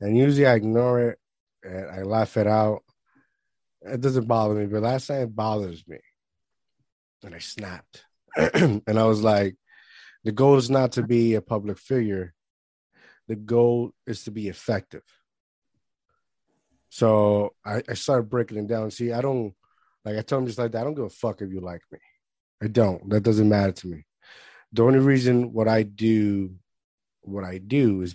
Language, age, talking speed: English, 30-49, 180 wpm